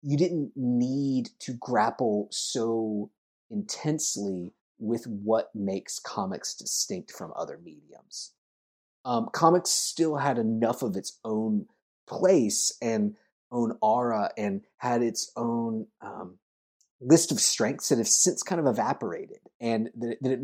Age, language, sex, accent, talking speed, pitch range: 30-49, English, male, American, 130 wpm, 110-175 Hz